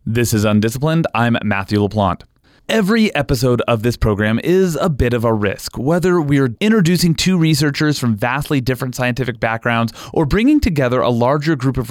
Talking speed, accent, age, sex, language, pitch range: 170 wpm, American, 30-49, male, English, 115-175 Hz